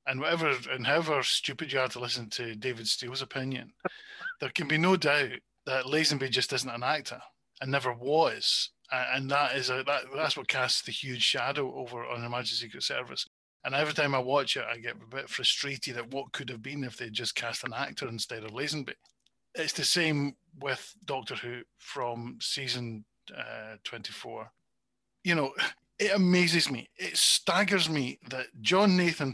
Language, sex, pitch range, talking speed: English, male, 125-160 Hz, 180 wpm